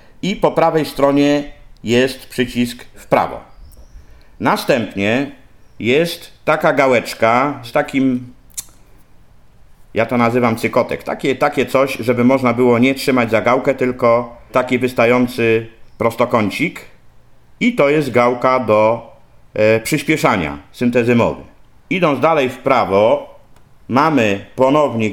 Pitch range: 110-135 Hz